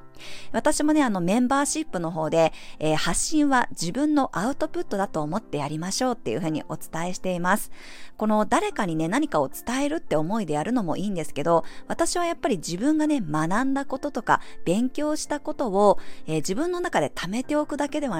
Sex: female